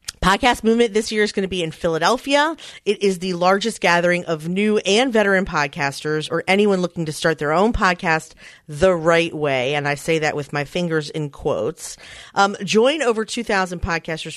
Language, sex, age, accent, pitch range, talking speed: English, female, 40-59, American, 165-240 Hz, 190 wpm